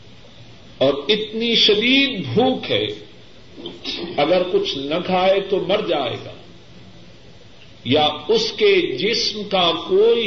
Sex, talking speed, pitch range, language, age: male, 110 wpm, 160-220 Hz, Urdu, 50-69